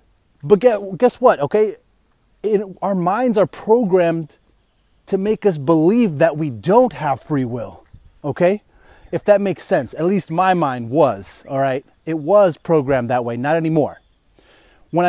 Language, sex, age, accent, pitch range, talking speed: English, male, 30-49, American, 145-190 Hz, 155 wpm